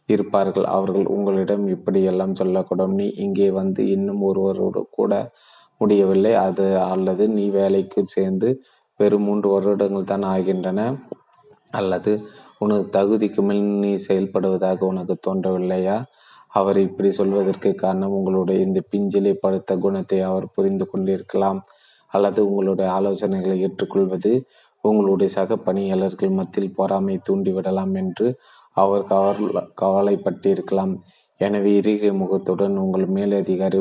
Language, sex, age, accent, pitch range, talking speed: Tamil, male, 20-39, native, 95-100 Hz, 110 wpm